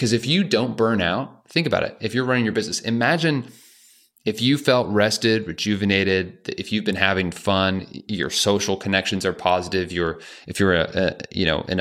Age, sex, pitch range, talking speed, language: 30-49, male, 90-115 Hz, 195 wpm, English